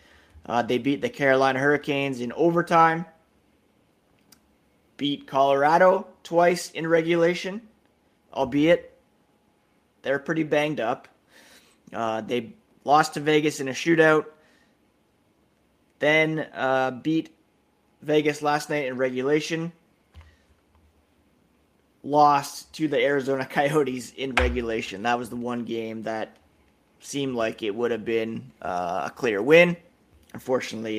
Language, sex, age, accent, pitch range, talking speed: English, male, 30-49, American, 125-150 Hz, 110 wpm